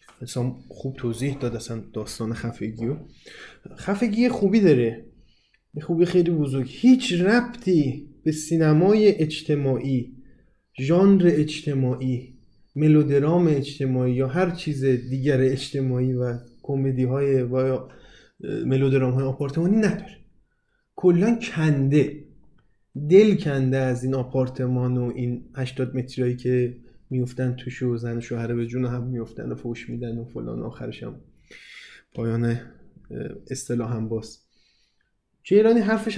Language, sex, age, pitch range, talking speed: Persian, male, 20-39, 125-165 Hz, 120 wpm